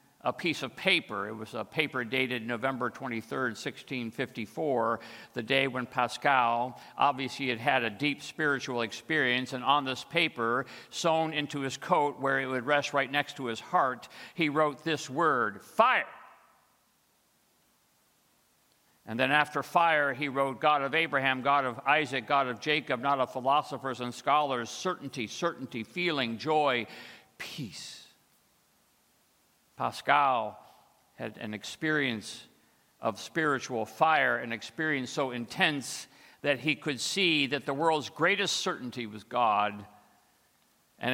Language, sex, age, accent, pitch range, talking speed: English, male, 50-69, American, 120-145 Hz, 135 wpm